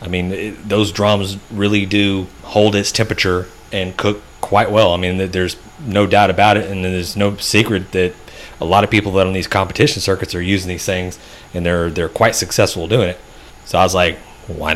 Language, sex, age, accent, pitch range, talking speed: English, male, 30-49, American, 90-105 Hz, 210 wpm